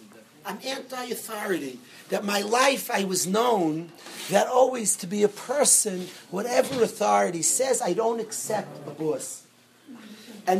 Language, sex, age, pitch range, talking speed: English, male, 40-59, 185-230 Hz, 130 wpm